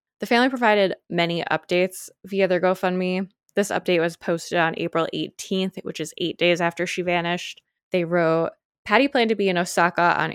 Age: 20-39